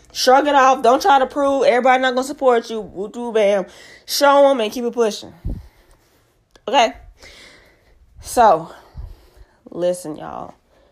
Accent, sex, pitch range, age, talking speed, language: American, female, 195-255 Hz, 20-39, 145 wpm, English